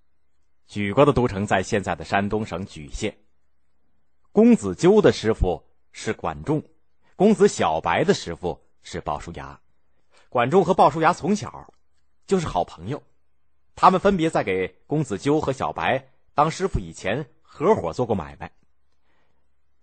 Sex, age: male, 30-49